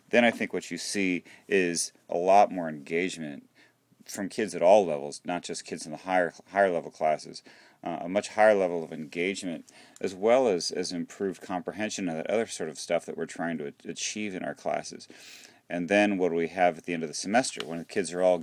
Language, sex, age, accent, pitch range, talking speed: English, male, 40-59, American, 80-95 Hz, 225 wpm